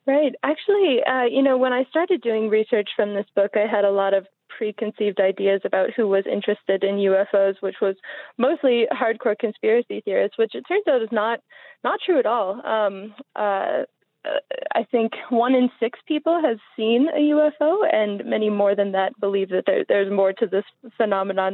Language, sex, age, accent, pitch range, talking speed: English, female, 20-39, American, 200-245 Hz, 185 wpm